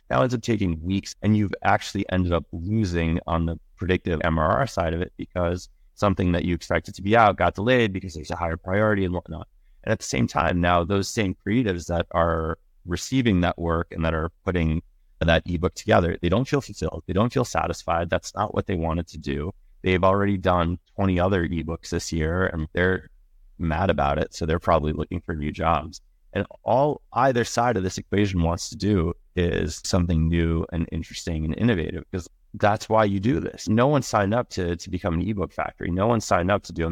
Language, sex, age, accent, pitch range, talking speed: English, male, 30-49, American, 80-100 Hz, 210 wpm